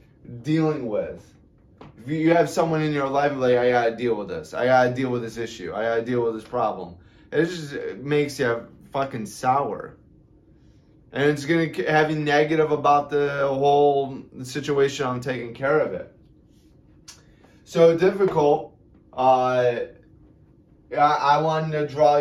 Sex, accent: male, American